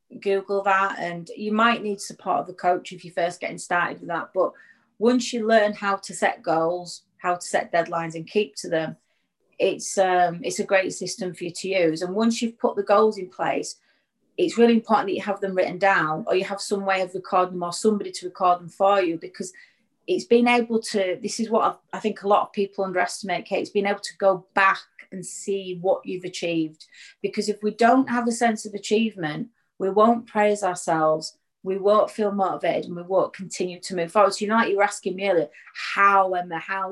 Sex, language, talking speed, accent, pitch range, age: female, English, 220 wpm, British, 180-210 Hz, 30-49